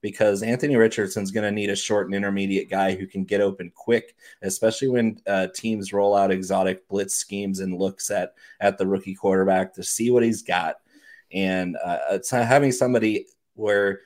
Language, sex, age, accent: English, male, 30-49, American